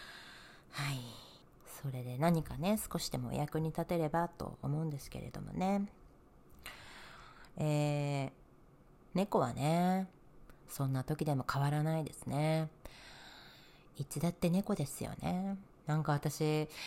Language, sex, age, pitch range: Japanese, female, 40-59, 130-160 Hz